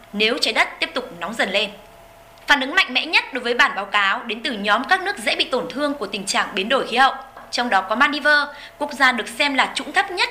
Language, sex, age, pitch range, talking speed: Vietnamese, female, 20-39, 245-305 Hz, 270 wpm